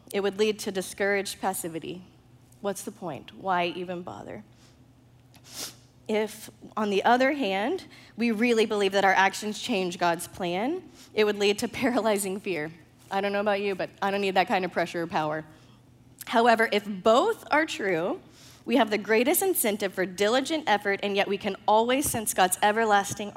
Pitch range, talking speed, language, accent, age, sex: 180-230 Hz, 175 wpm, English, American, 20-39, female